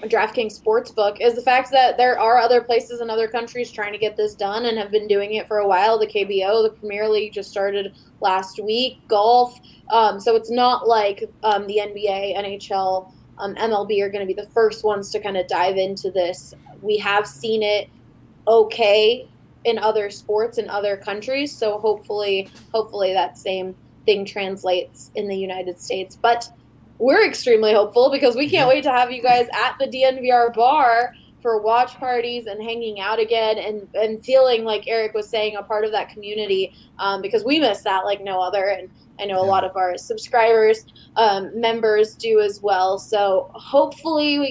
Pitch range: 200-240 Hz